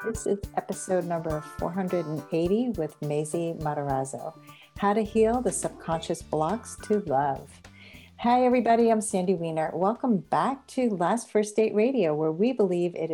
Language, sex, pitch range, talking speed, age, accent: English, female, 155-210 Hz, 145 wpm, 50-69, American